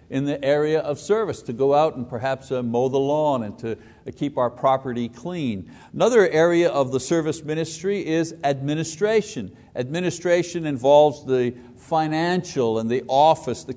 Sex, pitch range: male, 125-165 Hz